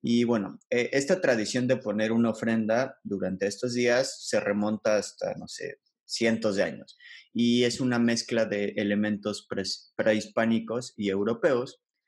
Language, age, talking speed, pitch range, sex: Polish, 30-49, 145 wpm, 105-120 Hz, male